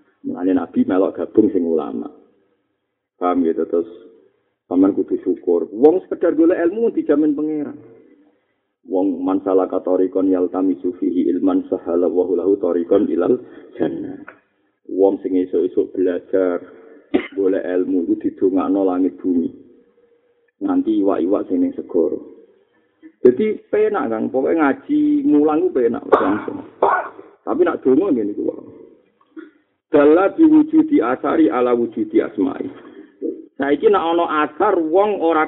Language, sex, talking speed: Malay, male, 120 wpm